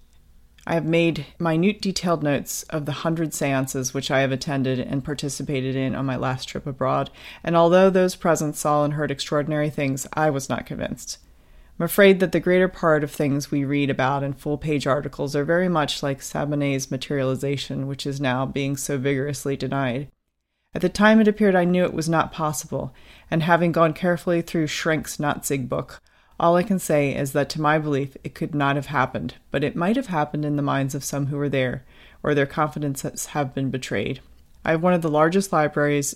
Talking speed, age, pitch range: 200 wpm, 30-49, 135-170 Hz